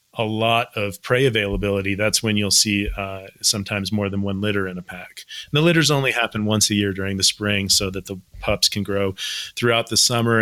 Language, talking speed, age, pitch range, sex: English, 220 wpm, 30-49, 100-115 Hz, male